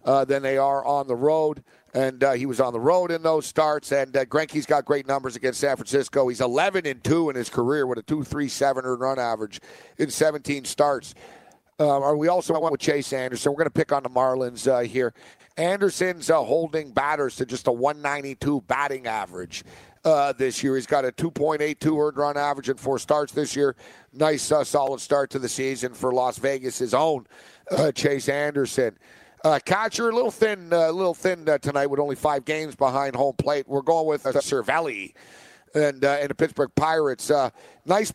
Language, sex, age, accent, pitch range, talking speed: English, male, 50-69, American, 135-155 Hz, 205 wpm